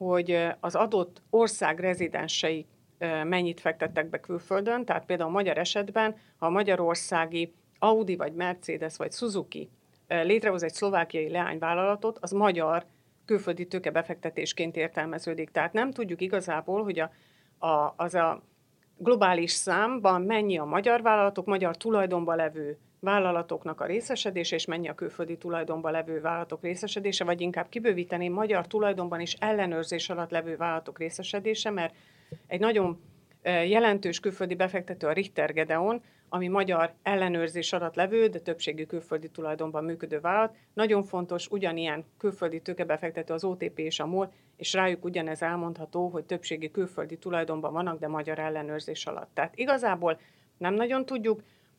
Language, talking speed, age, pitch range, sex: Hungarian, 135 wpm, 50-69, 165-200 Hz, female